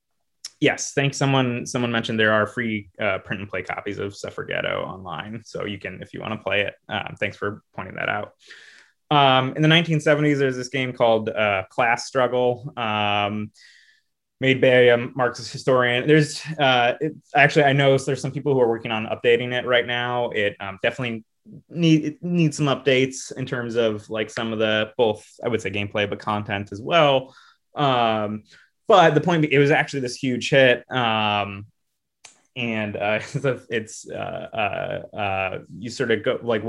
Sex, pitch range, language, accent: male, 105-135 Hz, English, American